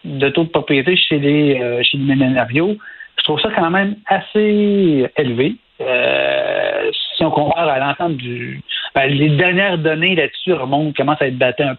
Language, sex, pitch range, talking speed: French, male, 140-185 Hz, 180 wpm